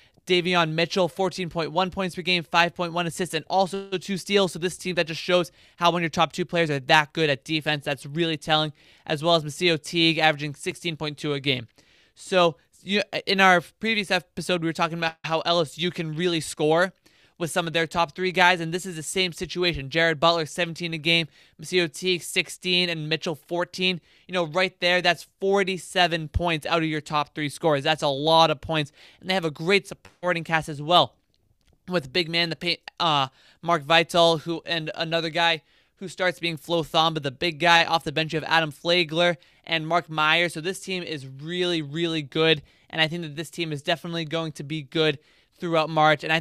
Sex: male